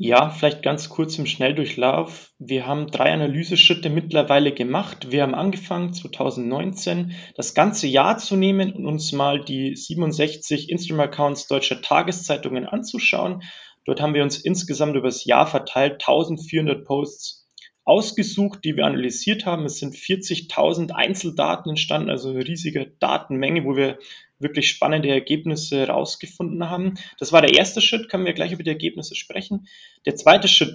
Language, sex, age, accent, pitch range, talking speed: German, male, 30-49, German, 135-170 Hz, 150 wpm